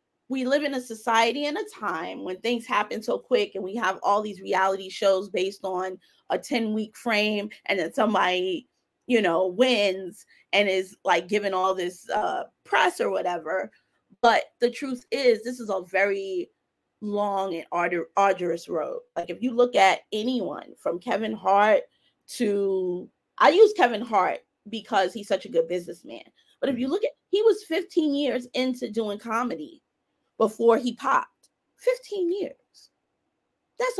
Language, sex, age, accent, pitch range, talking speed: English, female, 20-39, American, 195-275 Hz, 160 wpm